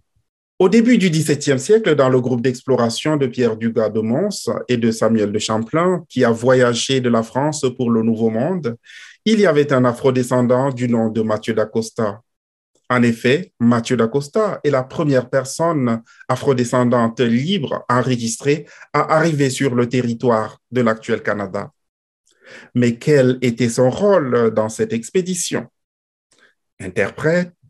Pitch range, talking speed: 115-140 Hz, 145 wpm